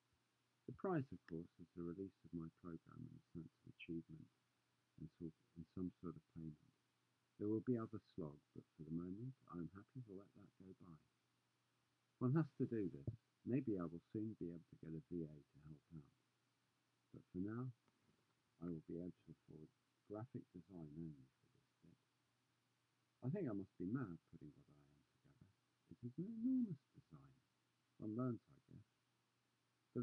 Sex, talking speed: male, 185 wpm